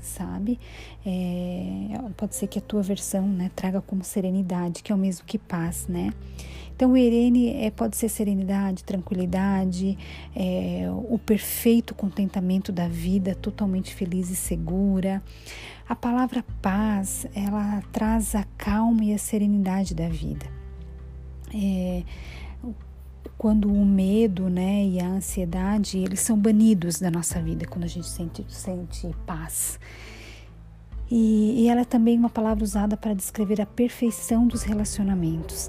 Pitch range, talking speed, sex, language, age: 175-215 Hz, 135 wpm, female, Portuguese, 40-59